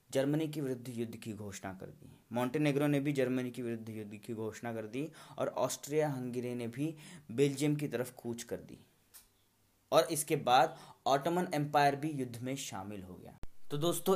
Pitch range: 105-140 Hz